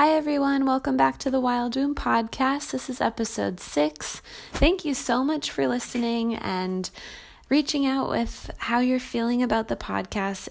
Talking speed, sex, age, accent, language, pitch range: 165 wpm, female, 20-39, American, English, 175-220 Hz